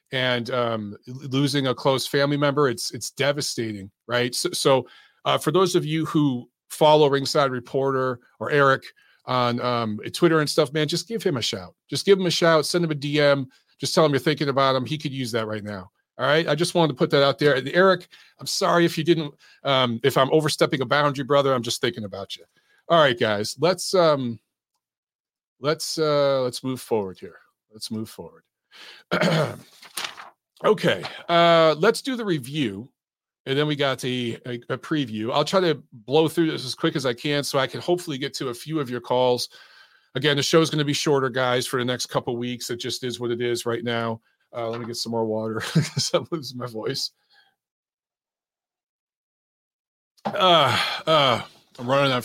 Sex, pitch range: male, 120-155 Hz